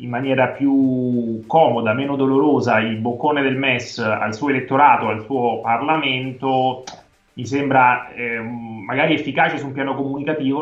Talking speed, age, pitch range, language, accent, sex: 135 wpm, 30-49, 120-150 Hz, Italian, native, male